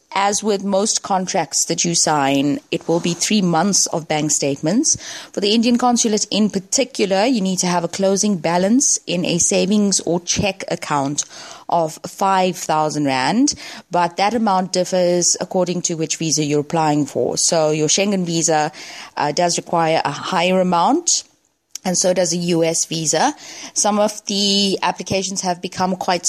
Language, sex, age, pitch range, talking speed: English, female, 20-39, 165-210 Hz, 160 wpm